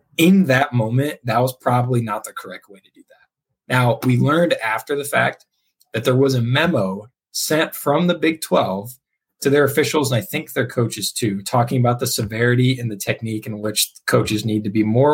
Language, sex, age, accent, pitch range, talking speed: English, male, 20-39, American, 110-140 Hz, 205 wpm